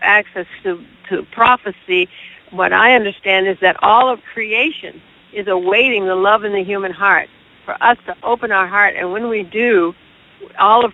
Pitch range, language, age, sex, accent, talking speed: 190-240 Hz, English, 60-79, female, American, 175 wpm